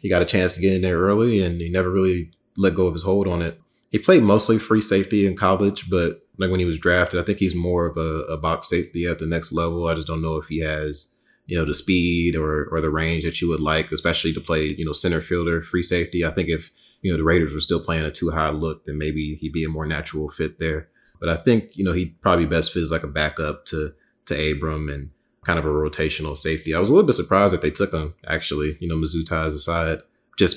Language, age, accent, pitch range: English, 30-49, American, 80-90 Hz